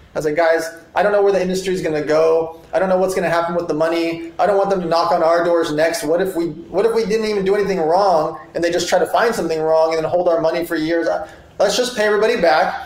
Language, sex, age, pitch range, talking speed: English, male, 20-39, 170-200 Hz, 305 wpm